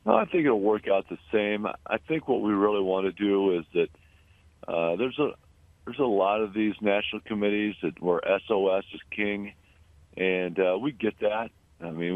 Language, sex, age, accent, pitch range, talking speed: English, male, 50-69, American, 85-105 Hz, 195 wpm